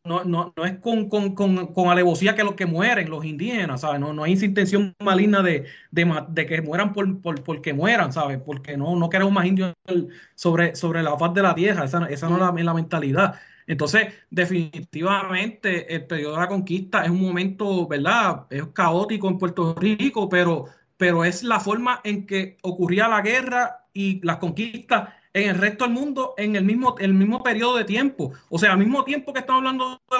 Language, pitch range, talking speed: Spanish, 170-215 Hz, 205 wpm